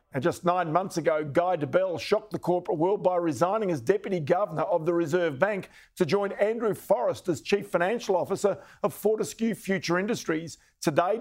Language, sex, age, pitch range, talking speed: English, male, 50-69, 170-200 Hz, 170 wpm